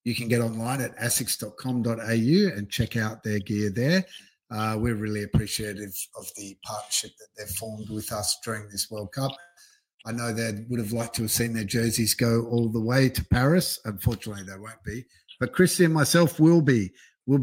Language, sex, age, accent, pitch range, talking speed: English, male, 50-69, Australian, 115-140 Hz, 195 wpm